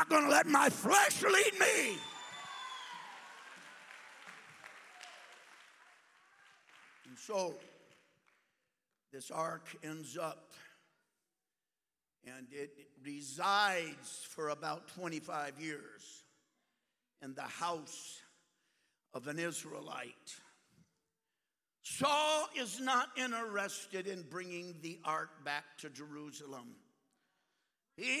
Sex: male